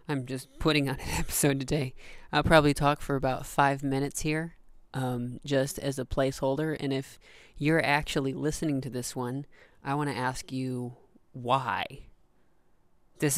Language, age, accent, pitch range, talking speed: English, 20-39, American, 135-155 Hz, 155 wpm